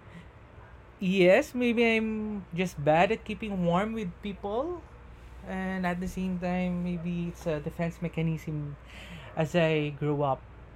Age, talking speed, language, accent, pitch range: 20-39, 135 wpm, English, Filipino, 130-185 Hz